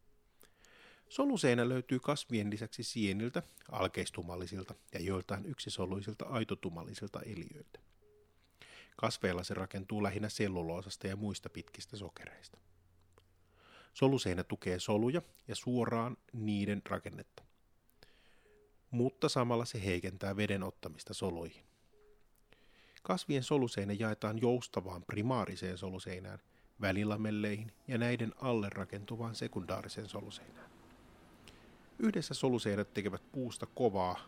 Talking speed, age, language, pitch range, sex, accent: 90 wpm, 30-49, Finnish, 95-125 Hz, male, native